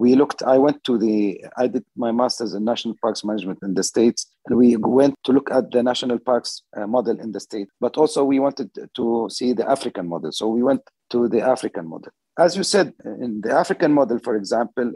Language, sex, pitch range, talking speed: English, male, 110-135 Hz, 220 wpm